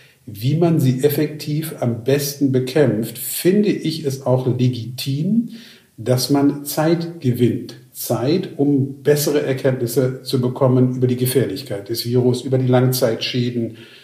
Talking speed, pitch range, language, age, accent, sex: 130 wpm, 125-145 Hz, German, 50-69, German, male